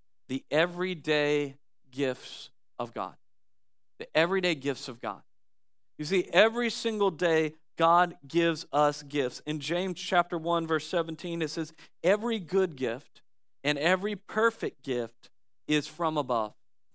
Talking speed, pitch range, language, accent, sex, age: 130 wpm, 145-185 Hz, English, American, male, 40-59